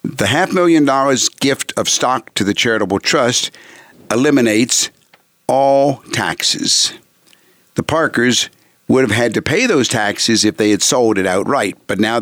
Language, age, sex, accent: English, 60-79, male, American